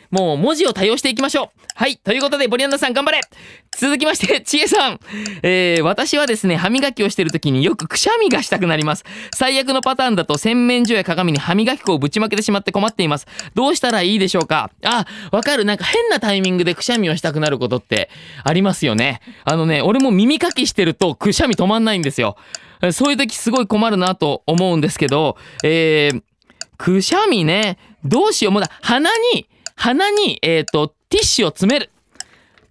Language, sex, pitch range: Japanese, male, 170-250 Hz